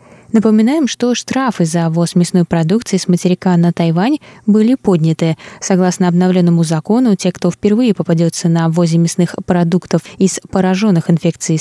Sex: female